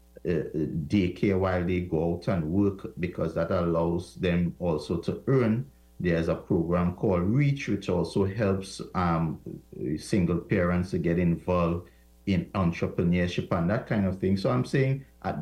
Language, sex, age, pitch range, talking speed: English, male, 50-69, 90-115 Hz, 155 wpm